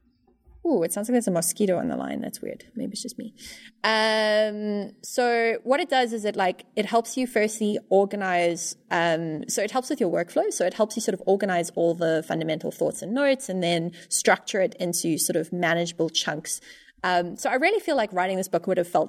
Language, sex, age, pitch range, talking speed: English, female, 20-39, 175-225 Hz, 215 wpm